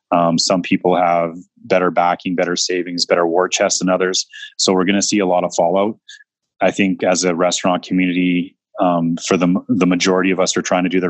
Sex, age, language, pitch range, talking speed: male, 20-39, English, 90-95 Hz, 215 wpm